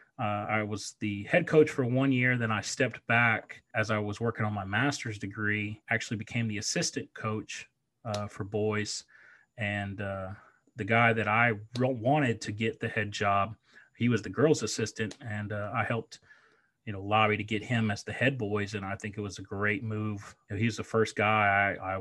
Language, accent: English, American